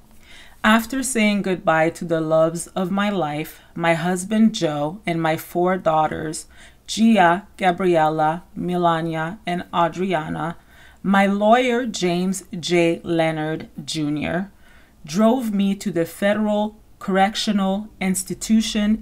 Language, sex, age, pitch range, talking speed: English, female, 40-59, 170-205 Hz, 105 wpm